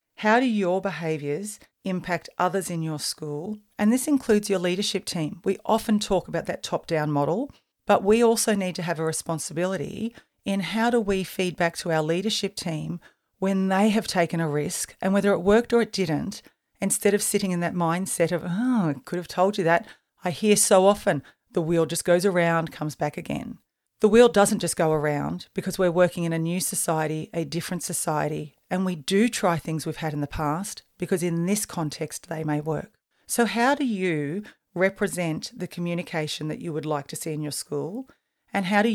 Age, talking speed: 40-59, 200 wpm